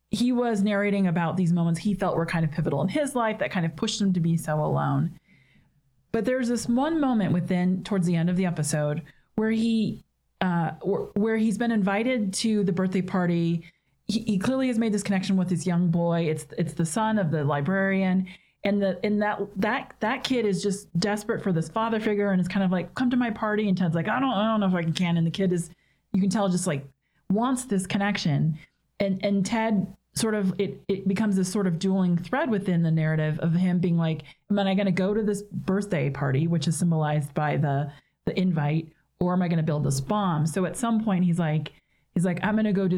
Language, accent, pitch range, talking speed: English, American, 165-215 Hz, 235 wpm